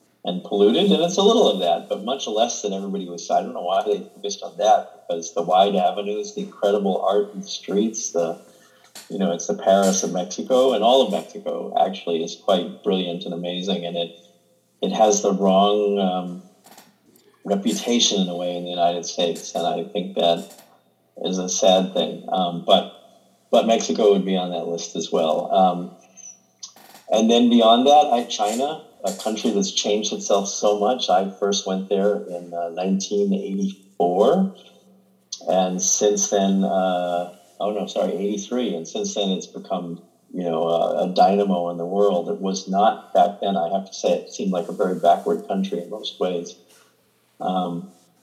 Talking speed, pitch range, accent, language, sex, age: 180 wpm, 90-110 Hz, American, English, male, 40-59